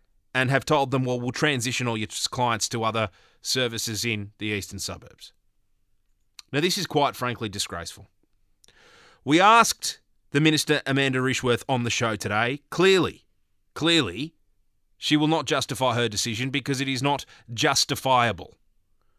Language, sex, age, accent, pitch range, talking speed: English, male, 30-49, Australian, 105-150 Hz, 145 wpm